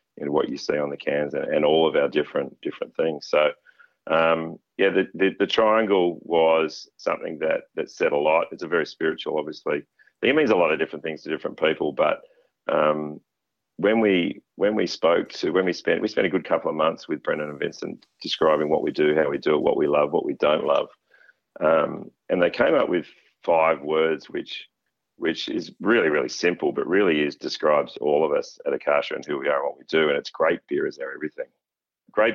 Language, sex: English, male